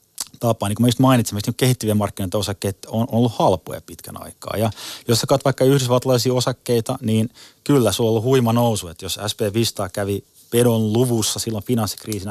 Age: 30-49